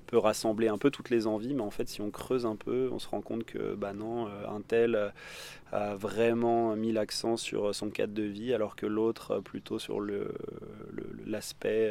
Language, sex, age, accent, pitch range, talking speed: French, male, 20-39, French, 105-115 Hz, 210 wpm